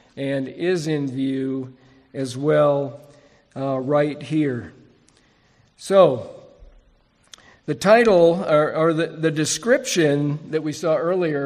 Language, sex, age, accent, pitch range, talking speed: English, male, 50-69, American, 135-155 Hz, 110 wpm